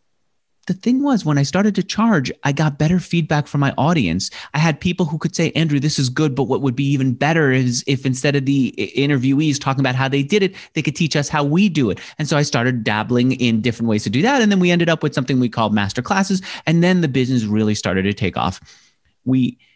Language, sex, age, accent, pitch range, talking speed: English, male, 30-49, American, 110-155 Hz, 250 wpm